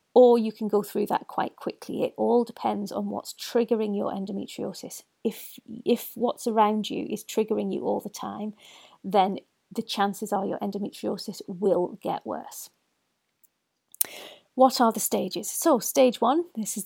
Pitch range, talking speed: 205-245 Hz, 160 wpm